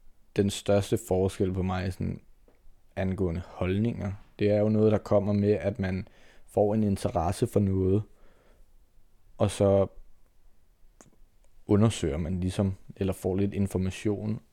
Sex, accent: male, native